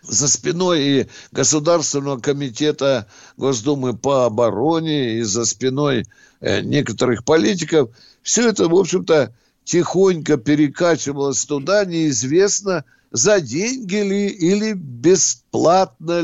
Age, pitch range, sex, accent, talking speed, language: 60-79, 140-190 Hz, male, native, 100 wpm, Russian